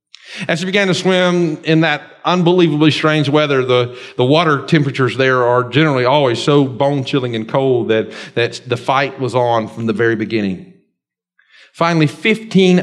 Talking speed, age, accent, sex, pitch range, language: 160 wpm, 40-59, American, male, 120-165 Hz, English